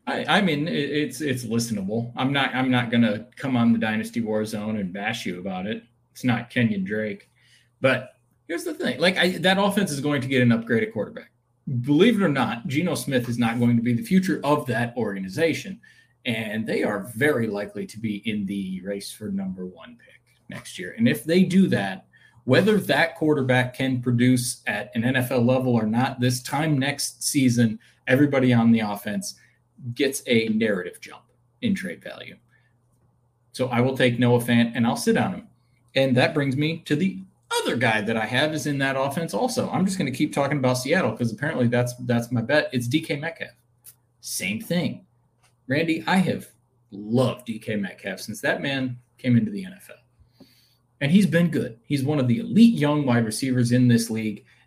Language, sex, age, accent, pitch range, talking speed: English, male, 30-49, American, 115-145 Hz, 195 wpm